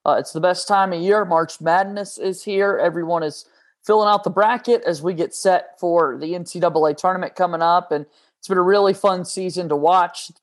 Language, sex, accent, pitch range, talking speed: English, male, American, 160-185 Hz, 215 wpm